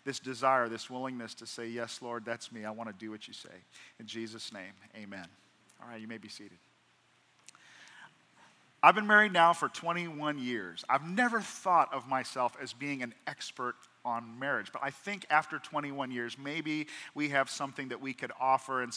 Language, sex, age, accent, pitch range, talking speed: English, male, 40-59, American, 125-165 Hz, 190 wpm